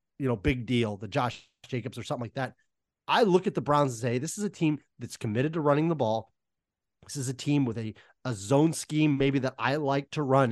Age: 30-49